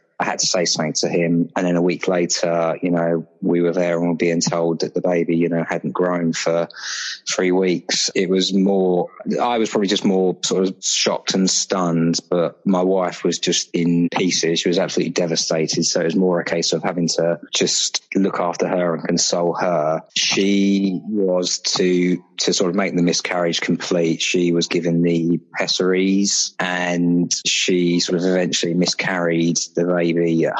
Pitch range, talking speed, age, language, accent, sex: 85-90 Hz, 190 wpm, 20-39, English, British, male